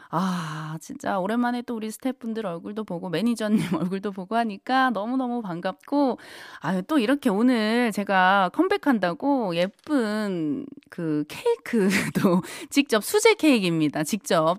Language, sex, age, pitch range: Korean, female, 20-39, 170-240 Hz